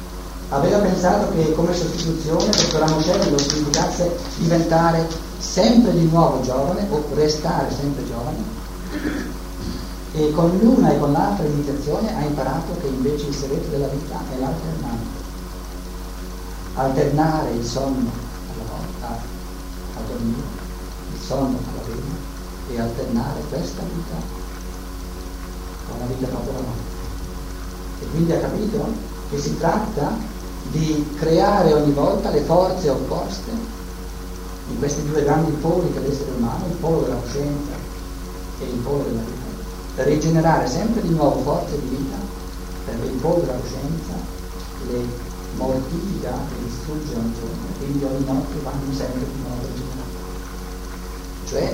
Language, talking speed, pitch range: Italian, 130 wpm, 90-155 Hz